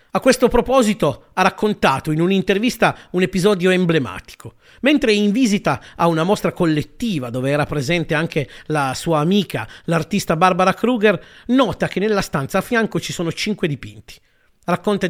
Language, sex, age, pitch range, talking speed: Italian, male, 40-59, 145-205 Hz, 150 wpm